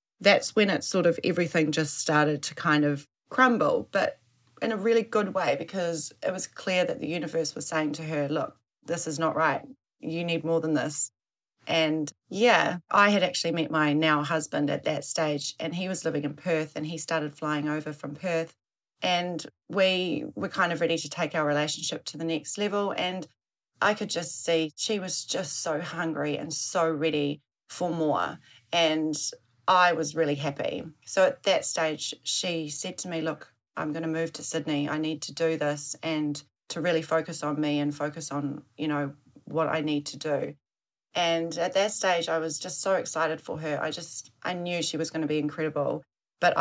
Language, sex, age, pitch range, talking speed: English, female, 30-49, 150-170 Hz, 200 wpm